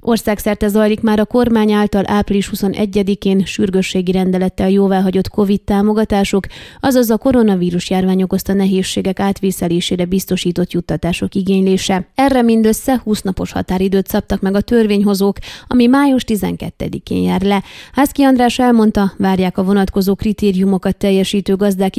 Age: 30-49